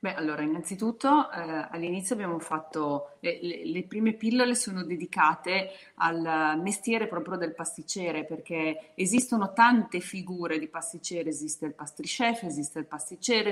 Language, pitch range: Italian, 155-190 Hz